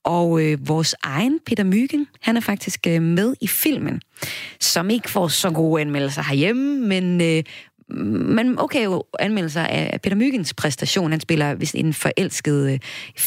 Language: Danish